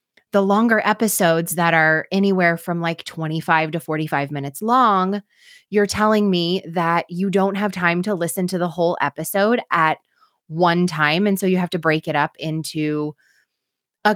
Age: 20-39